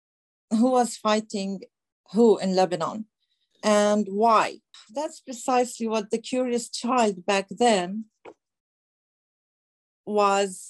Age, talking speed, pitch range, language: 40-59, 95 wpm, 190-225 Hz, English